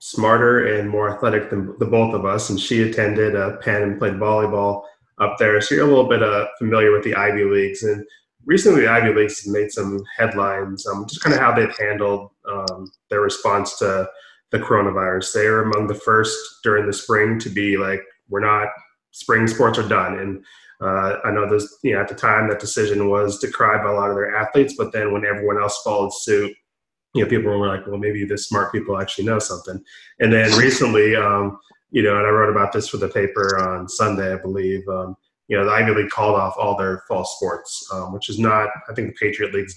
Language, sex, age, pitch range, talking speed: English, male, 20-39, 100-105 Hz, 220 wpm